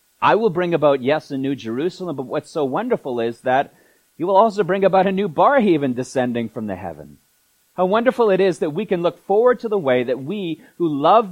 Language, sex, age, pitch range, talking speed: English, male, 30-49, 115-190 Hz, 225 wpm